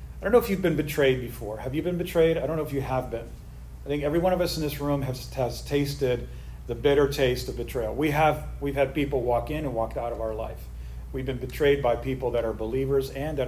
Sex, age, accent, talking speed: male, 40-59, American, 265 wpm